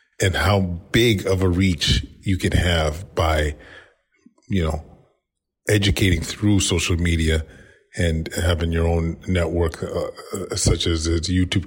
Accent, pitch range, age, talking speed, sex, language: American, 85-95 Hz, 30-49, 135 wpm, male, English